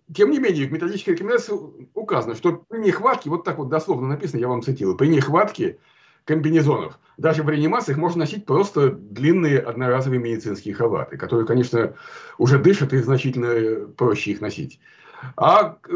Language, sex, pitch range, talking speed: Russian, male, 125-170 Hz, 155 wpm